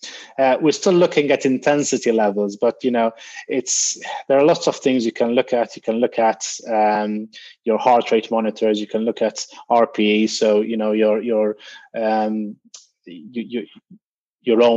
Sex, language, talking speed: male, English, 180 wpm